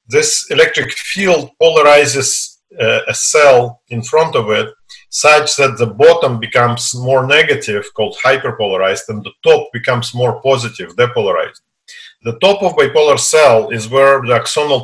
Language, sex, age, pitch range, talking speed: English, male, 50-69, 115-180 Hz, 145 wpm